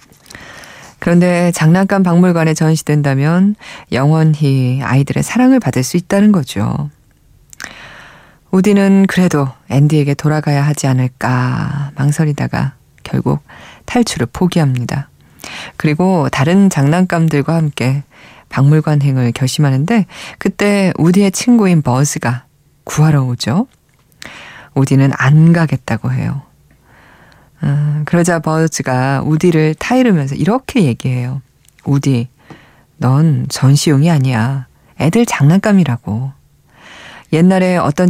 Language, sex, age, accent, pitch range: Korean, female, 20-39, native, 130-170 Hz